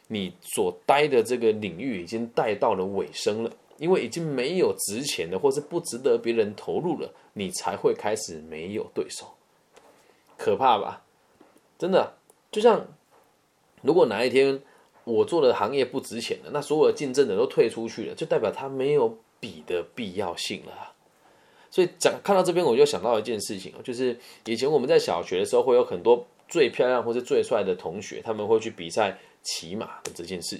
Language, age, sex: Chinese, 20-39, male